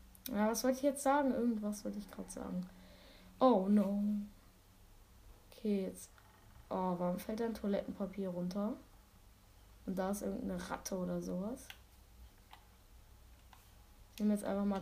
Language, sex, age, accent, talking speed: German, female, 20-39, German, 135 wpm